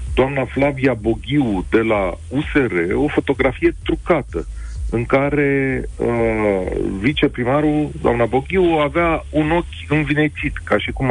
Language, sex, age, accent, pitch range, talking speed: Romanian, male, 40-59, native, 100-145 Hz, 120 wpm